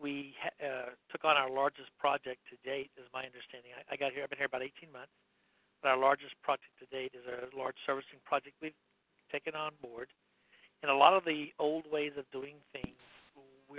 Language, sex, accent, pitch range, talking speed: English, male, American, 130-145 Hz, 210 wpm